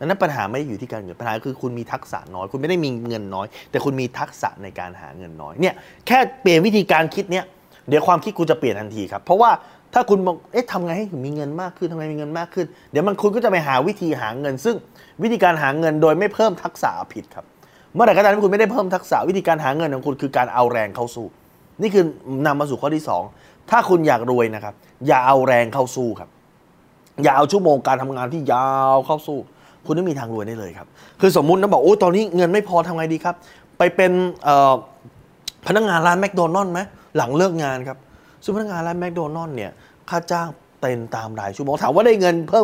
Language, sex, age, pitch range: Thai, male, 20-39, 130-180 Hz